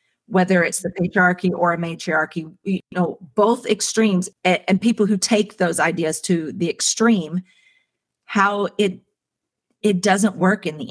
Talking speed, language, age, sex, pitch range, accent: 155 wpm, English, 40-59, female, 175-205 Hz, American